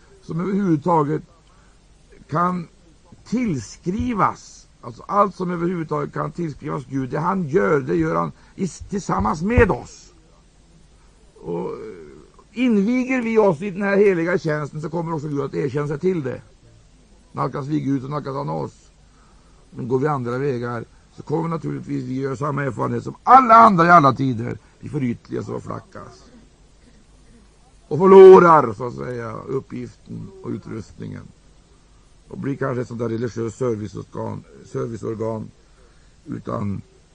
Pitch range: 120-175 Hz